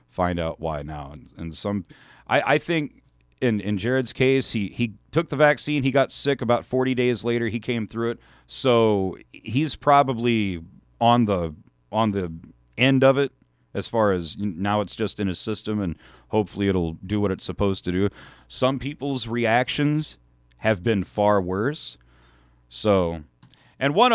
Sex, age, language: male, 40-59, English